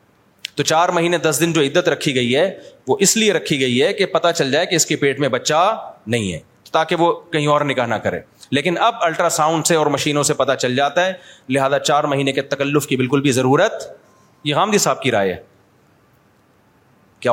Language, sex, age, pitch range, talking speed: Urdu, male, 30-49, 140-170 Hz, 220 wpm